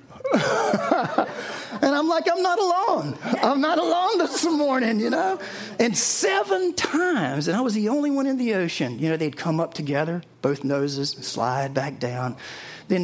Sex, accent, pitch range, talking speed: male, American, 150-225 Hz, 170 wpm